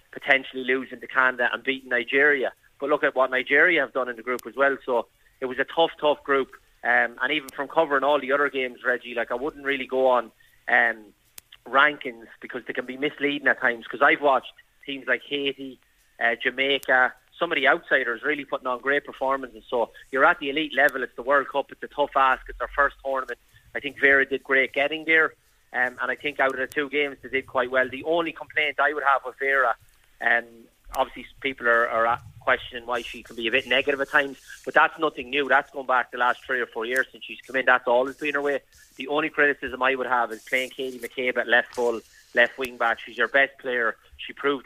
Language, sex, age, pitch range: English, male, 30-49, 125-140 Hz